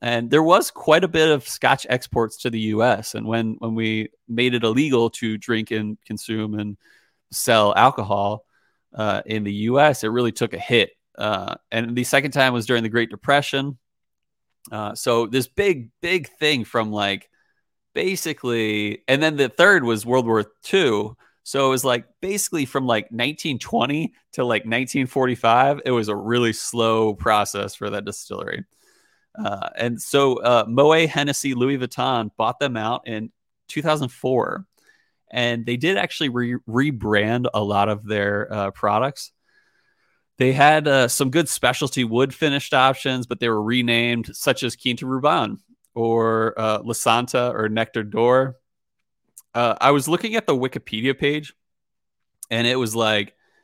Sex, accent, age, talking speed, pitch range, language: male, American, 30-49, 160 wpm, 110-140 Hz, English